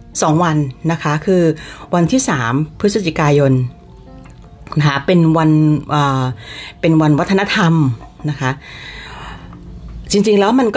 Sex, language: female, Thai